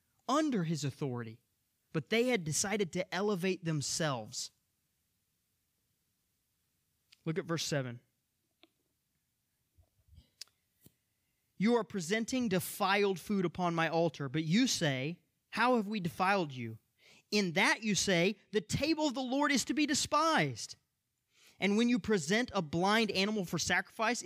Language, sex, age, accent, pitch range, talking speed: English, male, 20-39, American, 175-255 Hz, 130 wpm